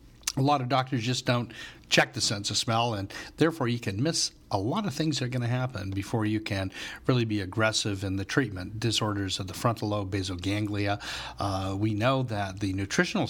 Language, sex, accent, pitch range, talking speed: English, male, American, 100-115 Hz, 210 wpm